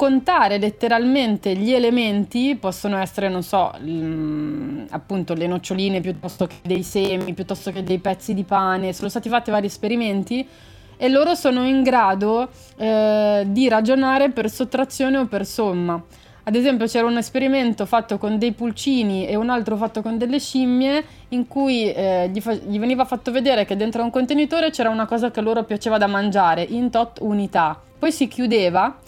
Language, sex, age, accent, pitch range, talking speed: Italian, female, 20-39, native, 200-255 Hz, 170 wpm